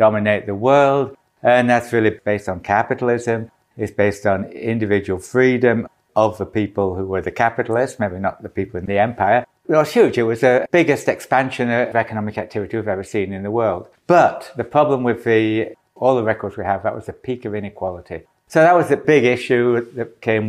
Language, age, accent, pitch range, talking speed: English, 60-79, British, 105-125 Hz, 200 wpm